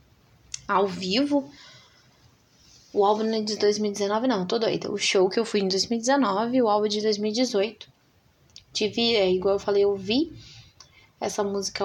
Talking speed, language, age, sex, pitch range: 145 wpm, Portuguese, 20-39, female, 200-255 Hz